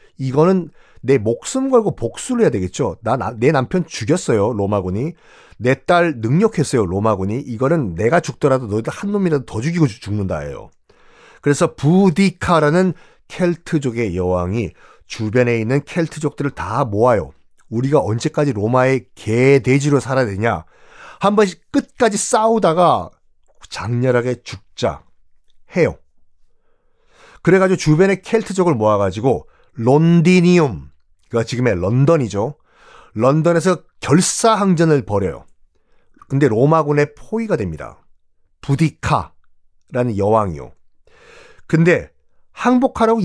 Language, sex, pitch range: Korean, male, 110-185 Hz